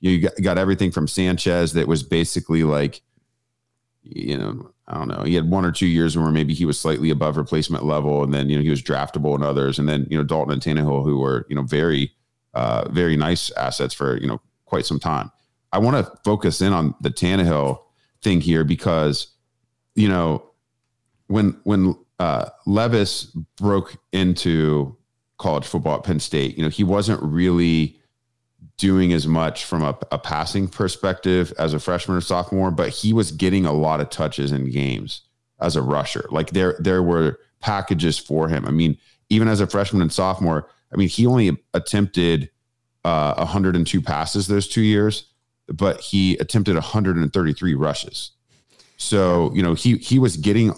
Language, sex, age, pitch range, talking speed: English, male, 40-59, 75-100 Hz, 180 wpm